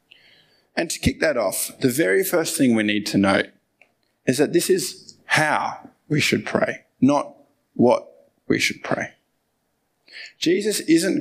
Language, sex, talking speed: English, male, 150 wpm